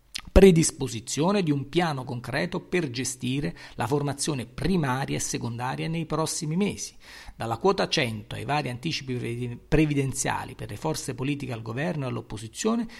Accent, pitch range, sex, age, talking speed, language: native, 130-195 Hz, male, 40-59, 140 wpm, Italian